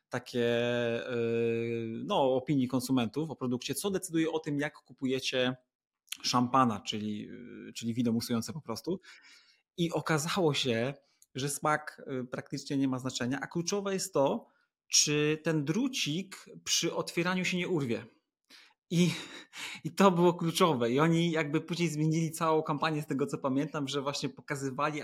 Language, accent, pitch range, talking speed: Polish, native, 125-160 Hz, 140 wpm